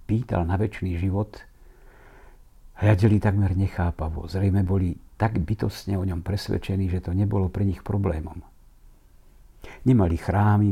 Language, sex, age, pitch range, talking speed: Slovak, male, 60-79, 90-105 Hz, 125 wpm